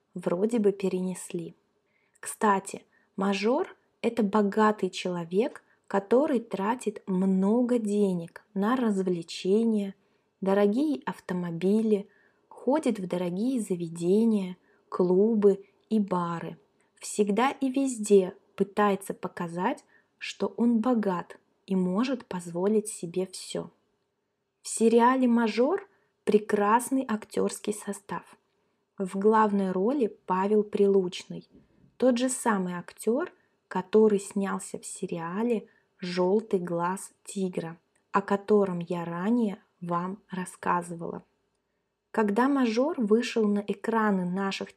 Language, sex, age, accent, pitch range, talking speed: Russian, female, 20-39, native, 190-225 Hz, 95 wpm